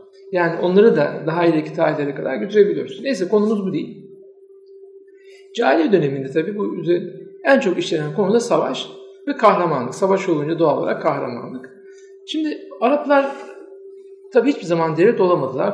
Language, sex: Turkish, male